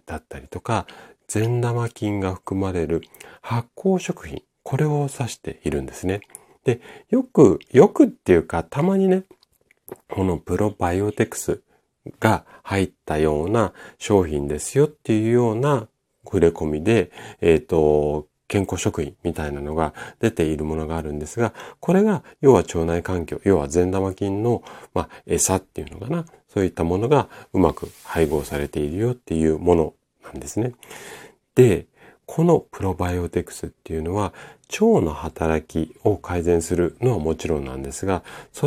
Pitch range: 80-125 Hz